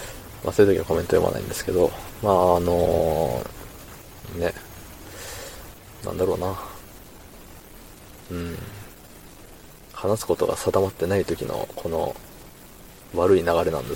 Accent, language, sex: native, Japanese, male